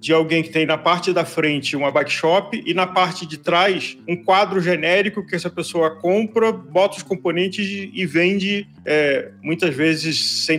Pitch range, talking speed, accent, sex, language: 155-200 Hz, 175 wpm, Brazilian, male, Portuguese